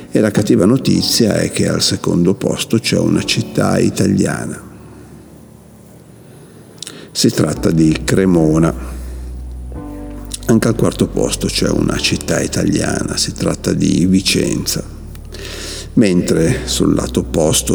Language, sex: Italian, male